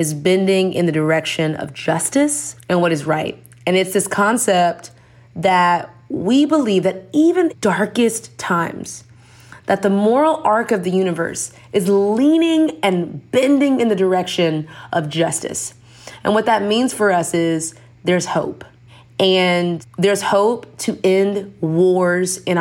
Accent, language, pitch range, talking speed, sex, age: American, English, 160-205 Hz, 145 wpm, female, 30-49